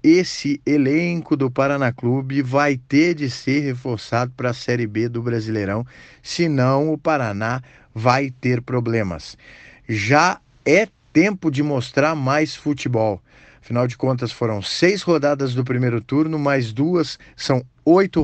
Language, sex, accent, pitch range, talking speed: Portuguese, male, Brazilian, 125-155 Hz, 140 wpm